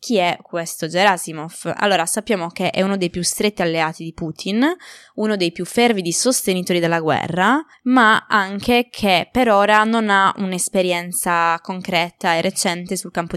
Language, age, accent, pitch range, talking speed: Italian, 20-39, native, 170-215 Hz, 155 wpm